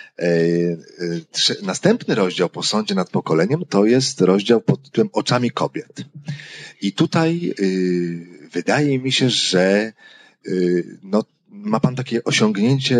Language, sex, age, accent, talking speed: Polish, male, 40-59, native, 105 wpm